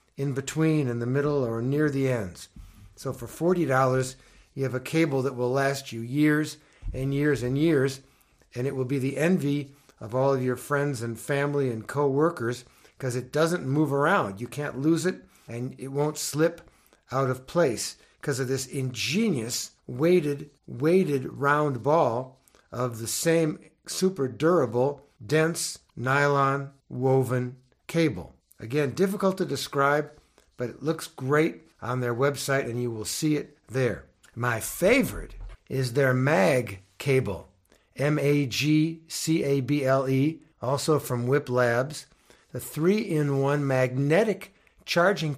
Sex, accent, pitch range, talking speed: male, American, 125-155 Hz, 140 wpm